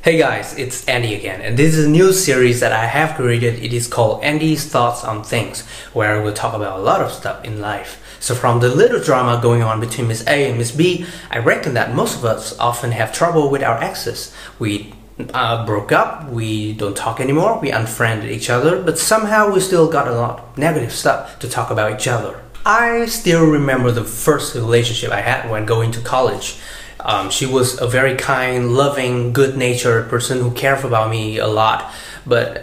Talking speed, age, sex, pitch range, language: 205 wpm, 20-39, male, 115-160 Hz, Vietnamese